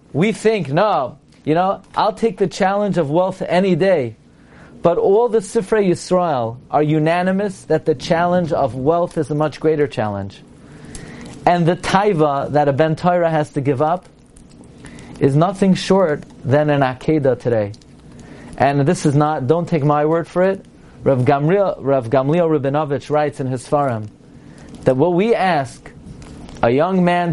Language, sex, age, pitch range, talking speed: English, male, 30-49, 140-175 Hz, 160 wpm